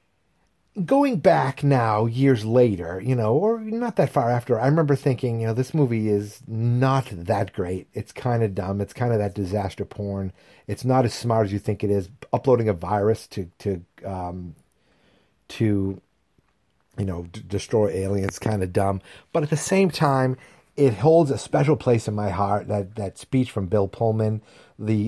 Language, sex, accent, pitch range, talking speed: English, male, American, 100-130 Hz, 185 wpm